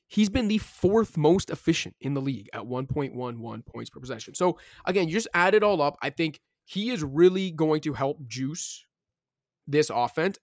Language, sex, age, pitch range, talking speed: English, male, 20-39, 125-155 Hz, 190 wpm